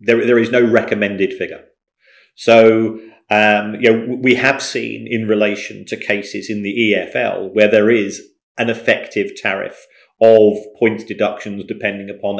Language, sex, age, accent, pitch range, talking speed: English, male, 40-59, British, 100-120 Hz, 150 wpm